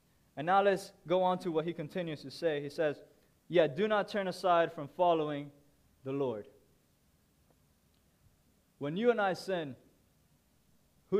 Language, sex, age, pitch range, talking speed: English, male, 20-39, 135-180 Hz, 155 wpm